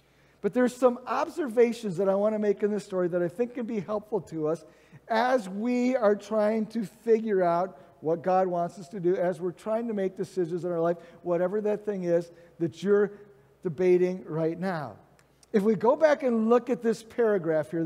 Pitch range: 185-230 Hz